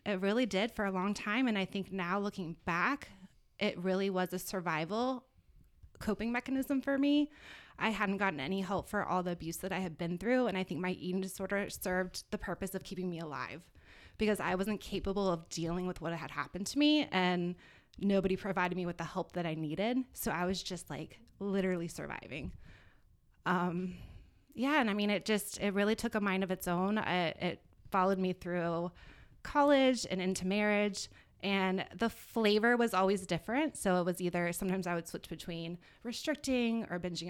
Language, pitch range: English, 180-215 Hz